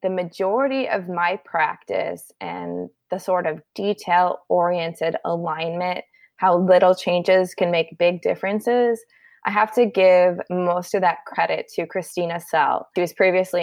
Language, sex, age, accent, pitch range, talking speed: English, female, 20-39, American, 170-210 Hz, 140 wpm